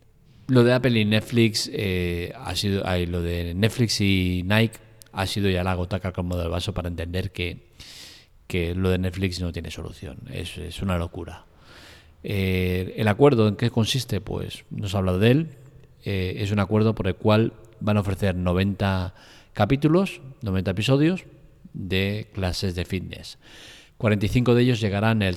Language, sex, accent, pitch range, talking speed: Spanish, male, Spanish, 90-115 Hz, 170 wpm